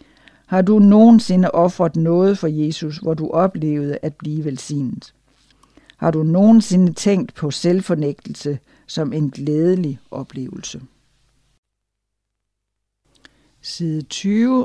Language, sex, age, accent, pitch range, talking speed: Danish, female, 60-79, native, 145-185 Hz, 100 wpm